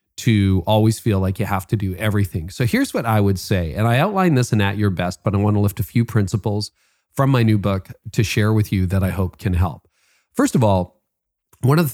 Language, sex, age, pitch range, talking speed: English, male, 40-59, 95-115 Hz, 250 wpm